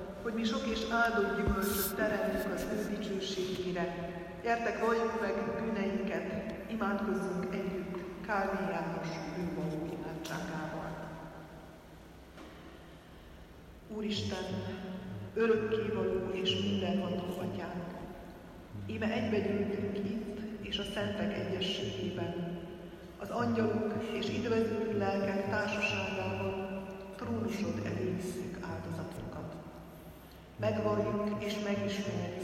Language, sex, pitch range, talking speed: Hungarian, female, 180-210 Hz, 80 wpm